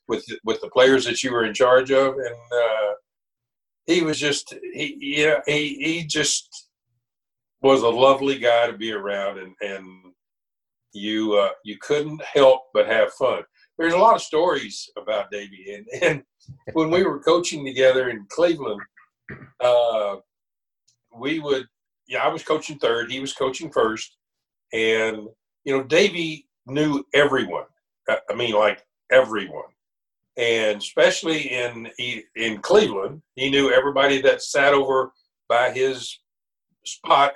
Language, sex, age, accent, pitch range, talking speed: English, male, 60-79, American, 110-150 Hz, 145 wpm